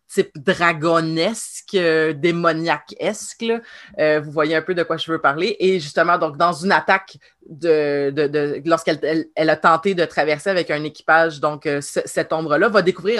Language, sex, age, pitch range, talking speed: French, female, 30-49, 160-190 Hz, 155 wpm